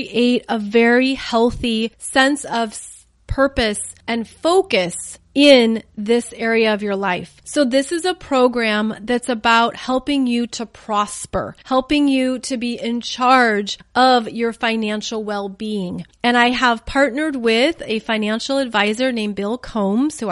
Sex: female